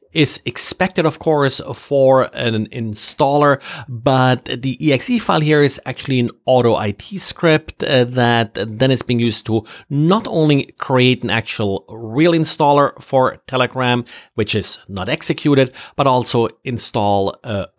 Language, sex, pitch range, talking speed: English, male, 110-145 Hz, 140 wpm